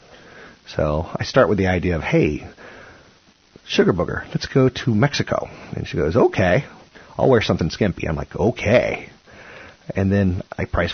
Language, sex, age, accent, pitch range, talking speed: English, male, 40-59, American, 80-105 Hz, 160 wpm